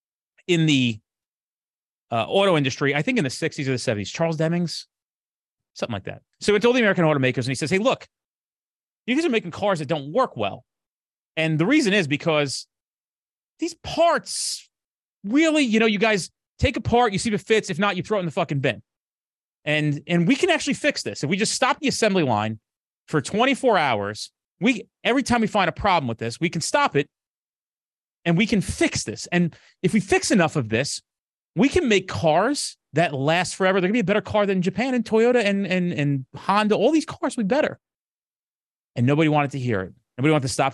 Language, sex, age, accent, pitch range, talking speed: English, male, 30-49, American, 125-205 Hz, 215 wpm